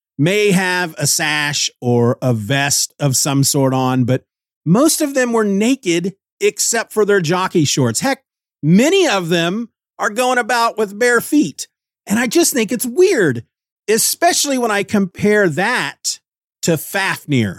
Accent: American